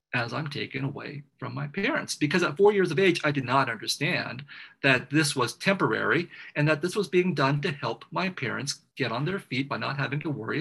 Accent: American